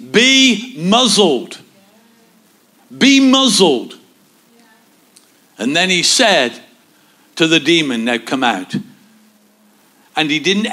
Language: English